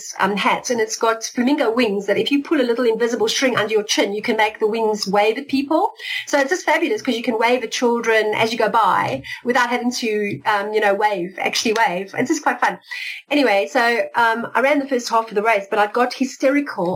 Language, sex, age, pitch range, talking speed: English, female, 40-59, 225-295 Hz, 240 wpm